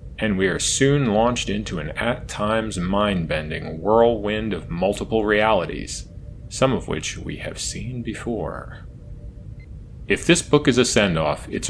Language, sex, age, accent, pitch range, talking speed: English, male, 30-49, American, 95-120 Hz, 140 wpm